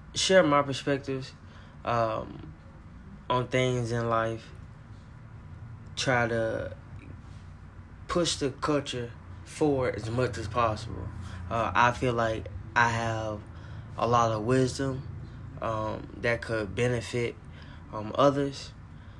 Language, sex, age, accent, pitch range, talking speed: English, male, 20-39, American, 95-125 Hz, 105 wpm